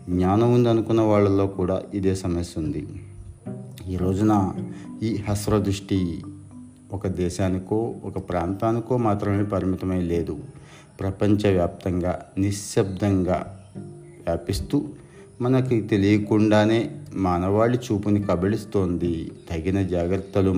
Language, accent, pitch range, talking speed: Telugu, native, 95-110 Hz, 80 wpm